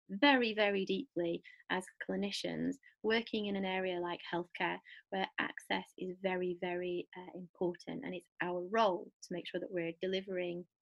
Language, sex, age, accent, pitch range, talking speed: English, female, 20-39, British, 180-220 Hz, 155 wpm